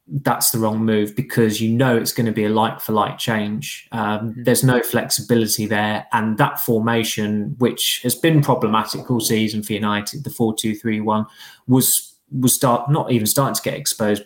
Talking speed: 180 wpm